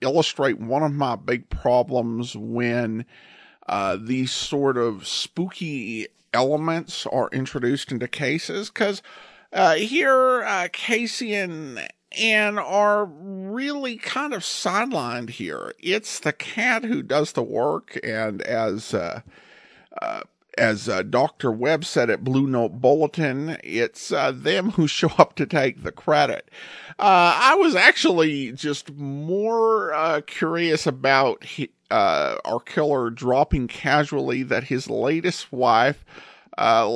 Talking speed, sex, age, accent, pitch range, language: 130 wpm, male, 50-69, American, 130-190 Hz, English